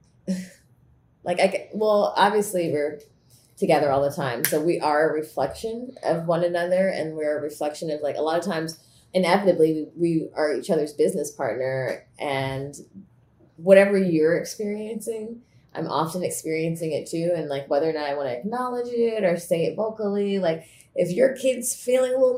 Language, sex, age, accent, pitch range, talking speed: English, female, 20-39, American, 145-190 Hz, 170 wpm